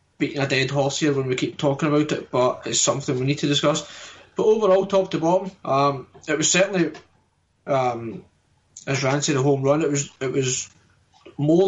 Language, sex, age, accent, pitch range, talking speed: English, male, 20-39, British, 135-160 Hz, 195 wpm